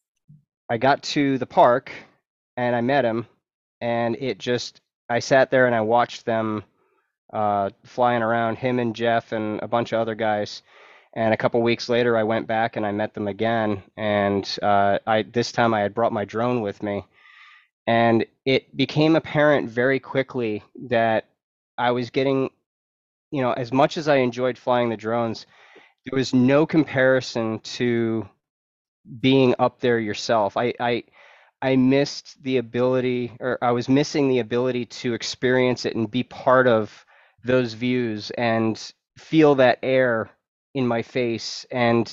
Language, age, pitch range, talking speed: English, 20-39, 110-130 Hz, 160 wpm